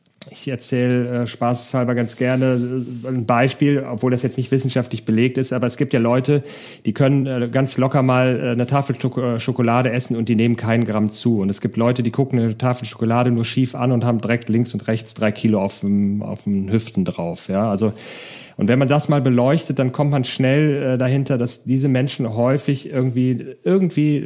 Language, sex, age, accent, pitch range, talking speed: German, male, 40-59, German, 115-135 Hz, 200 wpm